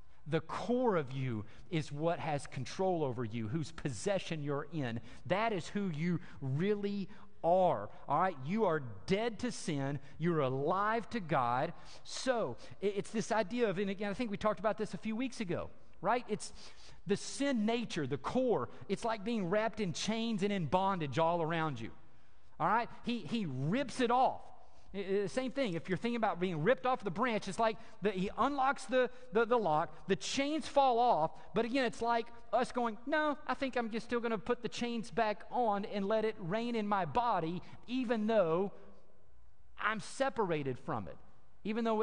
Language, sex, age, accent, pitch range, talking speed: English, male, 50-69, American, 165-230 Hz, 190 wpm